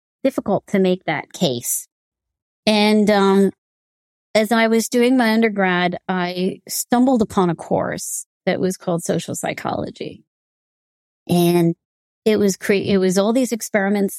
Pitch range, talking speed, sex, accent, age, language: 170-215 Hz, 135 wpm, female, American, 30-49, English